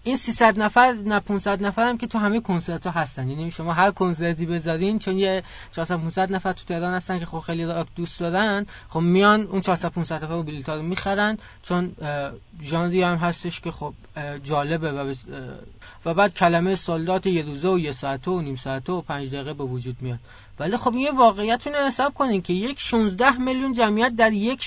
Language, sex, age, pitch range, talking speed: Persian, male, 20-39, 155-205 Hz, 190 wpm